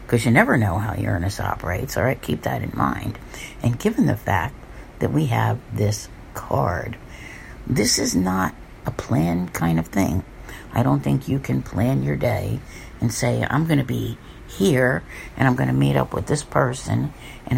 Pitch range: 95-130 Hz